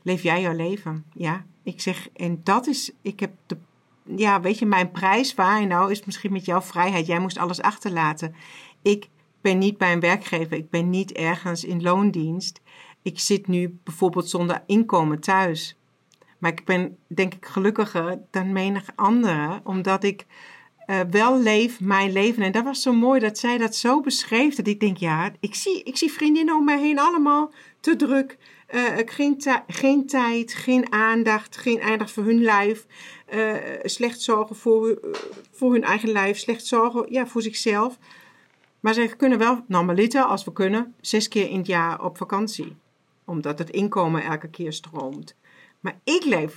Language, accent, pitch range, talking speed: English, Dutch, 180-225 Hz, 180 wpm